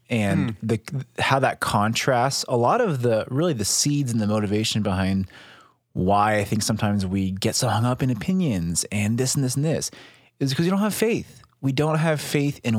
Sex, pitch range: male, 105-140 Hz